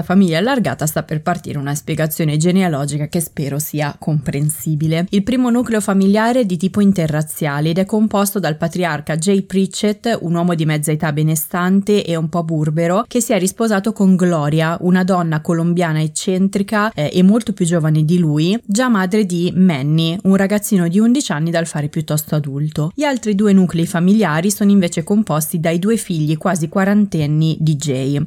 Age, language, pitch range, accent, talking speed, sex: 20-39, Italian, 160-200 Hz, native, 175 wpm, female